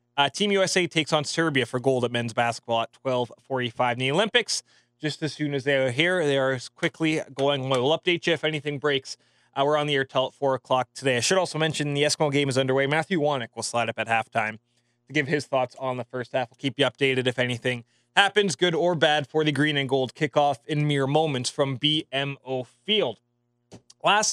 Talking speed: 220 wpm